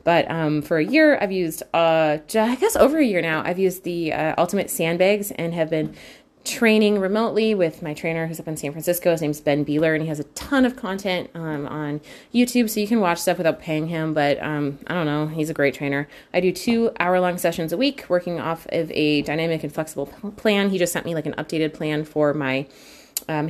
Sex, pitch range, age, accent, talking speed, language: female, 150-185 Hz, 30-49, American, 230 wpm, English